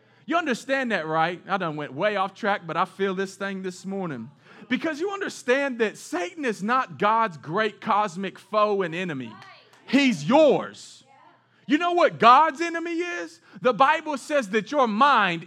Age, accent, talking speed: 30-49, American, 170 wpm